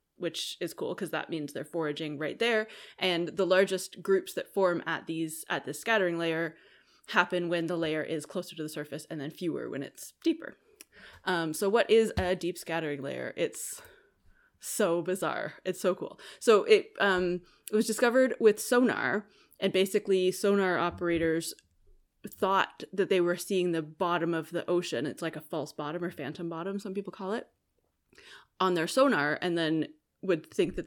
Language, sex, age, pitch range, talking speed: English, female, 20-39, 165-195 Hz, 180 wpm